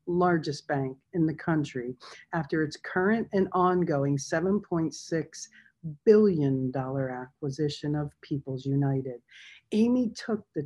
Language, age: English, 50-69